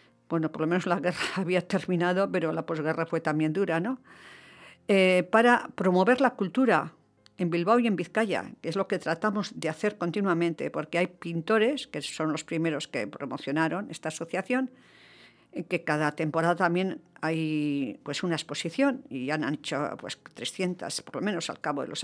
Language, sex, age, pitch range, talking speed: English, female, 50-69, 160-205 Hz, 175 wpm